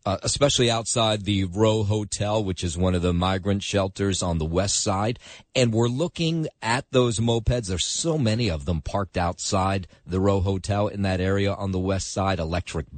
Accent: American